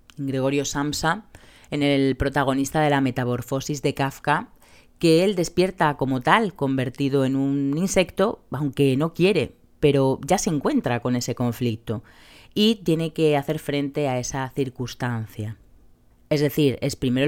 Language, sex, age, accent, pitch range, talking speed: Spanish, female, 30-49, Spanish, 130-165 Hz, 140 wpm